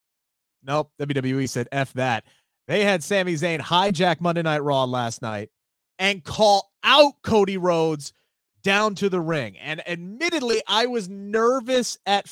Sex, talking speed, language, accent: male, 145 wpm, English, American